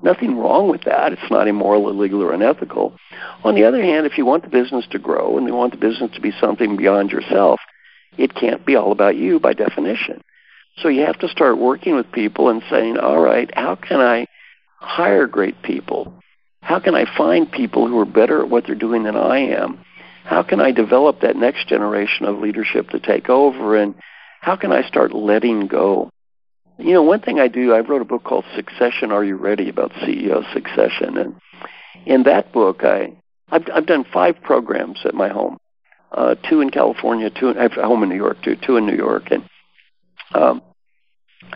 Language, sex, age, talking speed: English, male, 60-79, 205 wpm